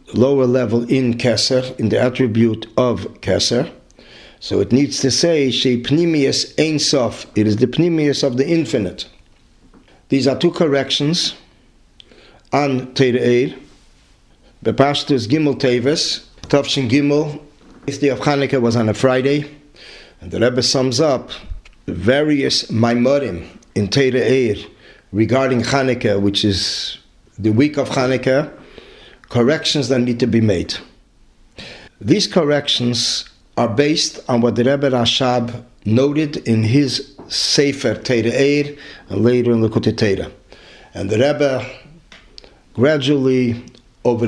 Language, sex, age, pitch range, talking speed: English, male, 50-69, 115-145 Hz, 125 wpm